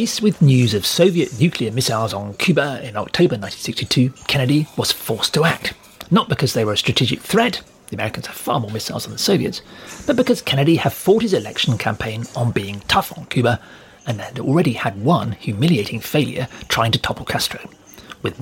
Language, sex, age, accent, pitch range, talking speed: English, male, 40-59, British, 115-170 Hz, 185 wpm